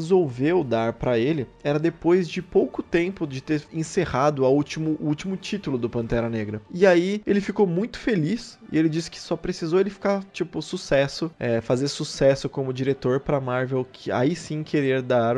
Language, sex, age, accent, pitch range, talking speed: Portuguese, male, 20-39, Brazilian, 120-170 Hz, 185 wpm